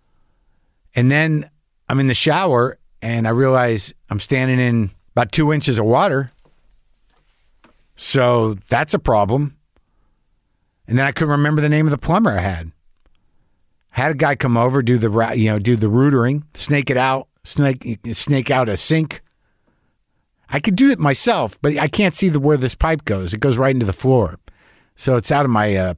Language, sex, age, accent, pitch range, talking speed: English, male, 50-69, American, 105-145 Hz, 180 wpm